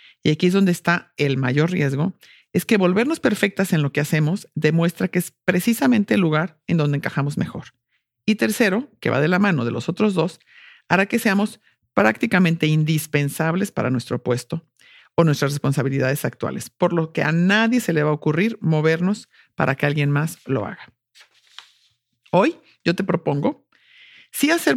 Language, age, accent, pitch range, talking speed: English, 50-69, Mexican, 145-195 Hz, 175 wpm